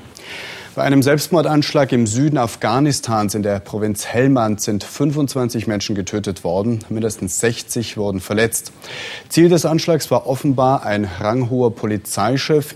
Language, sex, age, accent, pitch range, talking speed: German, male, 30-49, German, 105-130 Hz, 125 wpm